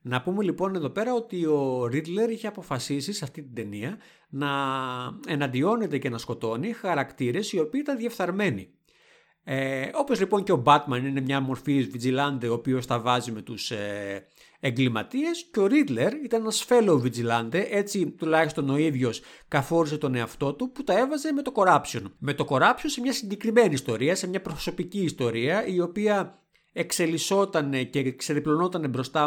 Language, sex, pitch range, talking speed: Greek, male, 135-190 Hz, 160 wpm